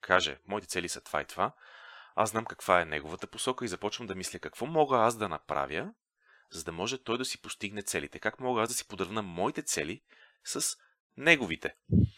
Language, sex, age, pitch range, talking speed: Bulgarian, male, 30-49, 95-125 Hz, 195 wpm